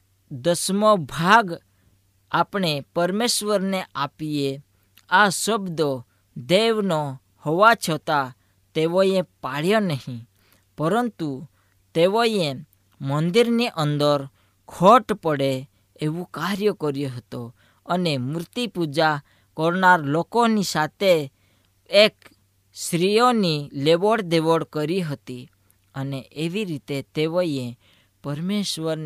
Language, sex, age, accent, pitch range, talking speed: Gujarati, female, 20-39, native, 130-180 Hz, 70 wpm